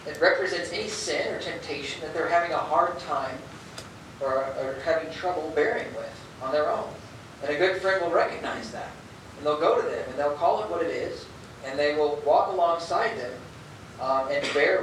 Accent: American